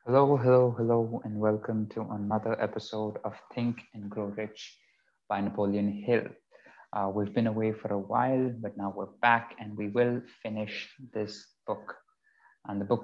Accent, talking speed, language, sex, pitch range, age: Indian, 165 wpm, English, male, 100-115 Hz, 20-39